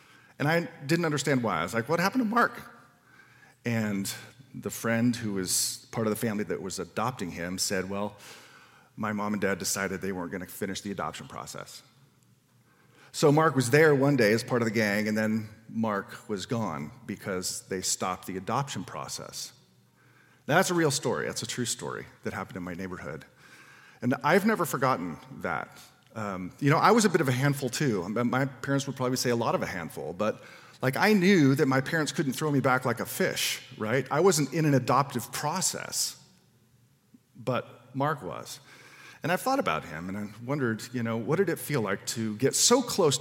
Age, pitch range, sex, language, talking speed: 40-59, 110-140 Hz, male, English, 200 wpm